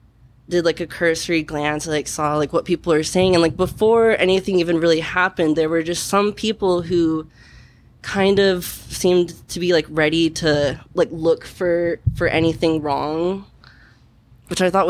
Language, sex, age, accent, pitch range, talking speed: English, female, 20-39, American, 150-180 Hz, 170 wpm